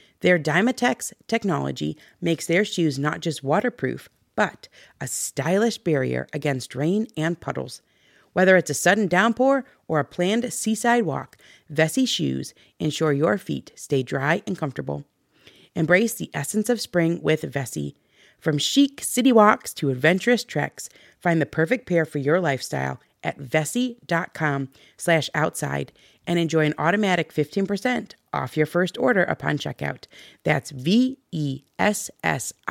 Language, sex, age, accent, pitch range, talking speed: English, female, 40-59, American, 145-215 Hz, 140 wpm